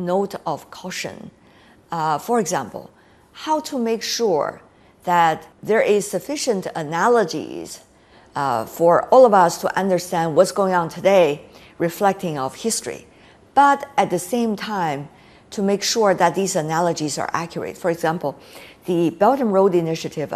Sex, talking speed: female, 145 wpm